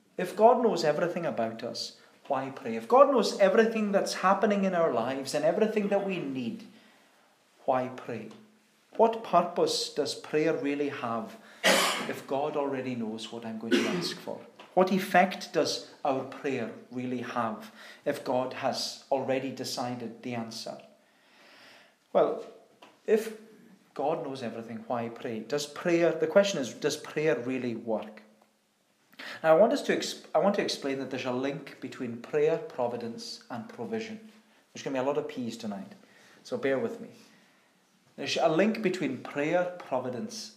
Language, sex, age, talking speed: English, male, 40-59, 155 wpm